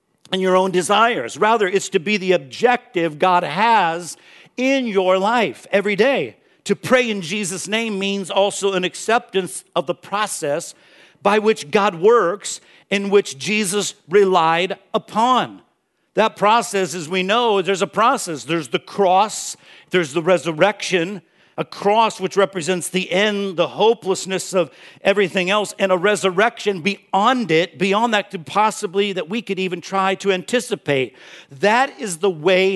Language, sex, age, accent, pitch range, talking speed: English, male, 50-69, American, 170-205 Hz, 150 wpm